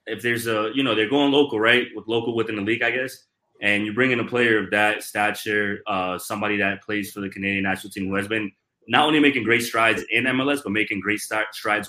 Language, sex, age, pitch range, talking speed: English, male, 20-39, 100-120 Hz, 245 wpm